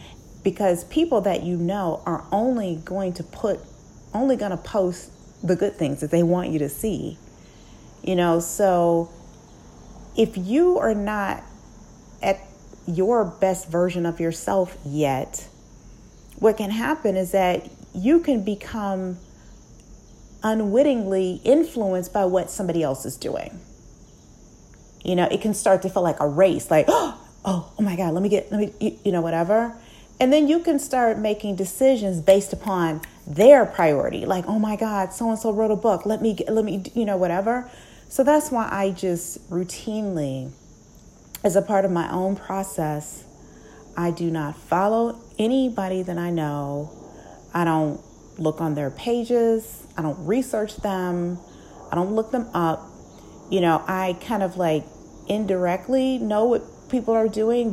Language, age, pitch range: English, 40-59, 170-220 Hz